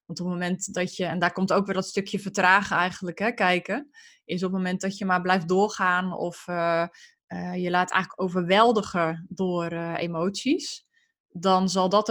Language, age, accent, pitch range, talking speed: Dutch, 20-39, Dutch, 180-215 Hz, 195 wpm